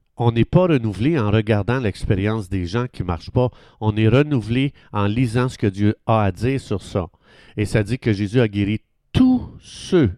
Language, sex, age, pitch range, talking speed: French, male, 50-69, 105-140 Hz, 205 wpm